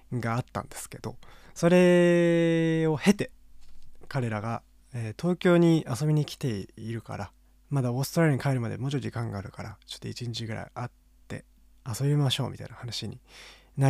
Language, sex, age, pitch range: Japanese, male, 20-39, 115-145 Hz